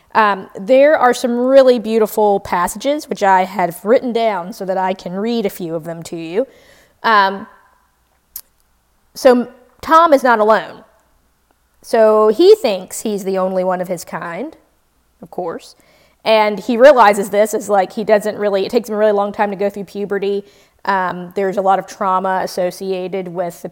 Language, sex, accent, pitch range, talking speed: English, female, American, 185-225 Hz, 175 wpm